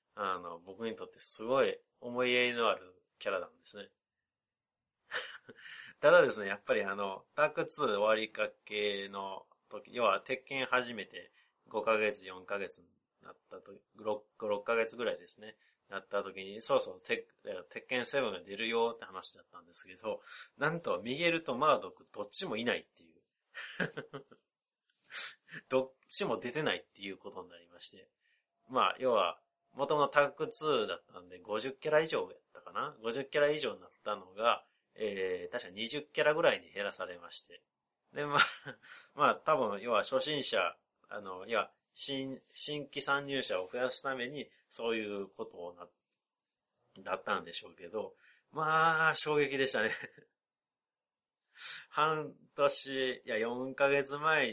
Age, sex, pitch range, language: 30-49, male, 110-160 Hz, Japanese